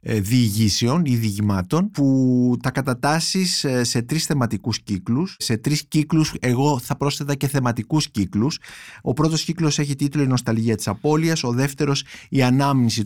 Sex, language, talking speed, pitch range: male, Greek, 145 wpm, 115-145 Hz